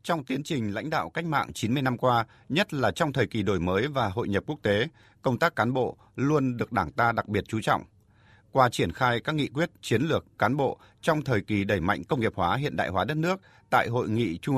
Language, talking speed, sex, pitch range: Vietnamese, 250 wpm, male, 105-140 Hz